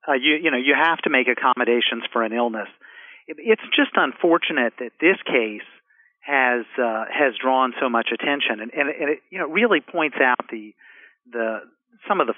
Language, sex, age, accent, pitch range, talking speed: English, male, 50-69, American, 115-145 Hz, 190 wpm